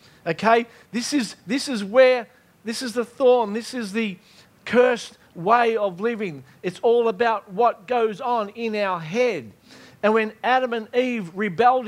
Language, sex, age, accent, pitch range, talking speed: English, male, 50-69, Australian, 200-260 Hz, 160 wpm